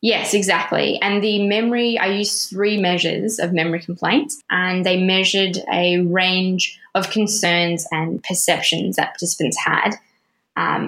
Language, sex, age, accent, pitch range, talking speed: English, female, 20-39, Australian, 175-200 Hz, 140 wpm